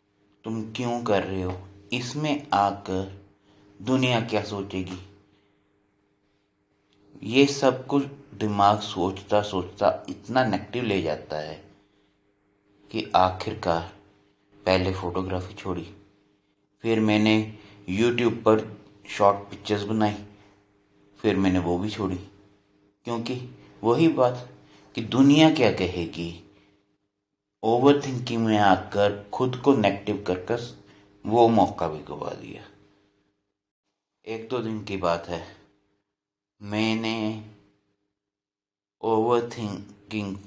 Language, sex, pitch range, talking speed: Punjabi, male, 100-110 Hz, 100 wpm